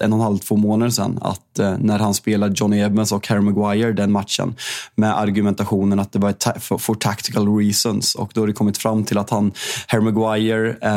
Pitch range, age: 105-120 Hz, 20-39